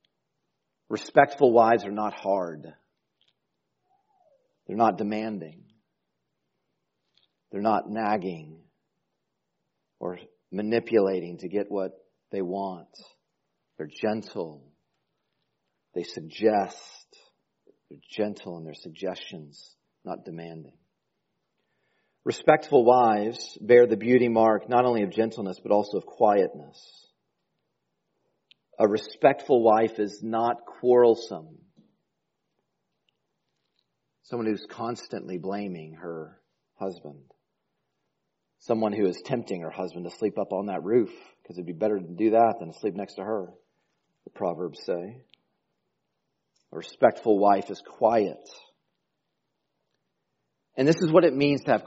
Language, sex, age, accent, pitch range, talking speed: English, male, 40-59, American, 90-115 Hz, 110 wpm